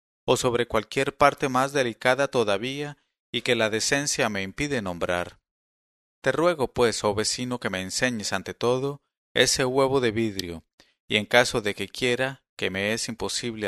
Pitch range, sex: 100-130 Hz, male